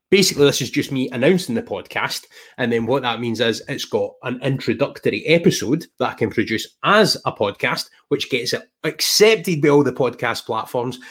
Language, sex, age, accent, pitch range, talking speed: English, male, 20-39, British, 110-150 Hz, 190 wpm